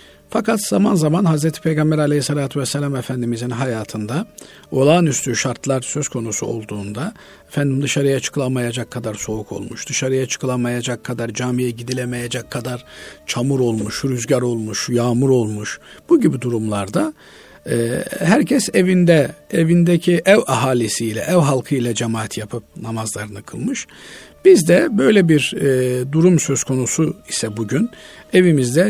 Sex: male